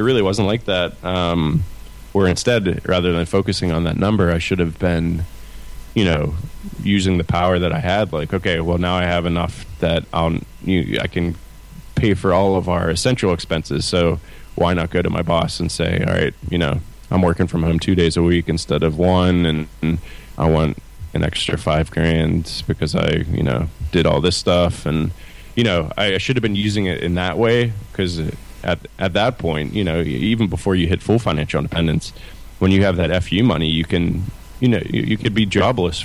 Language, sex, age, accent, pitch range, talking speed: English, male, 20-39, American, 85-100 Hz, 210 wpm